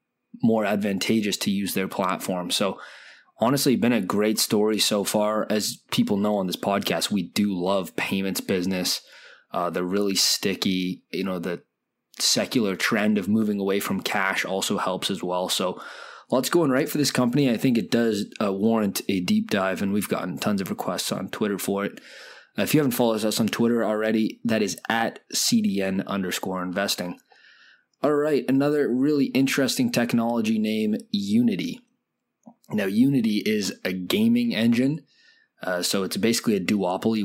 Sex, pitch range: male, 100-145 Hz